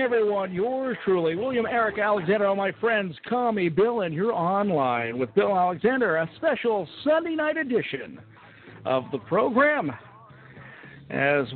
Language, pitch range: English, 160-225 Hz